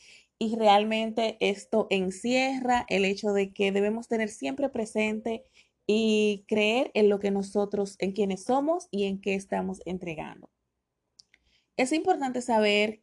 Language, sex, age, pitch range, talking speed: Spanish, female, 30-49, 195-235 Hz, 135 wpm